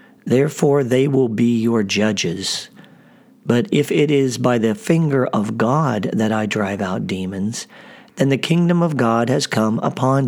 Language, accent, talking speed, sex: English, American, 165 wpm, male